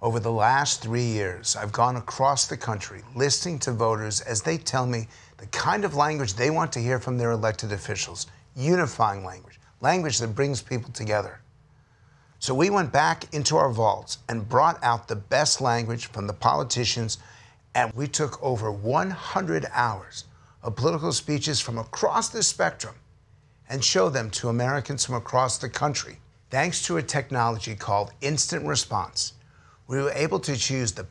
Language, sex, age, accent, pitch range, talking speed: English, male, 50-69, American, 110-135 Hz, 170 wpm